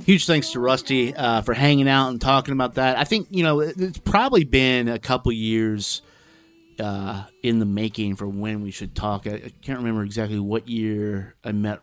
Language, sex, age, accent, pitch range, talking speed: English, male, 30-49, American, 105-150 Hz, 200 wpm